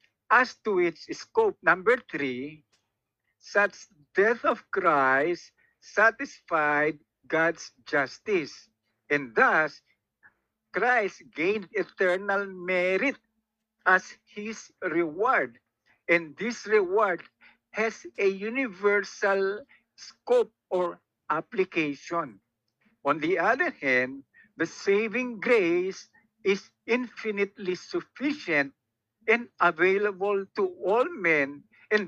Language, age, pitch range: Filipino, 50-69, 155-225 Hz